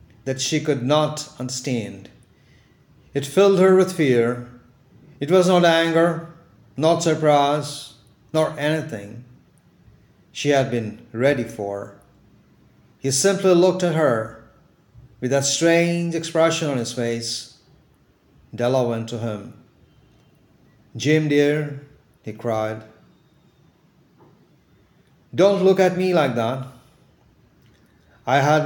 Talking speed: 105 wpm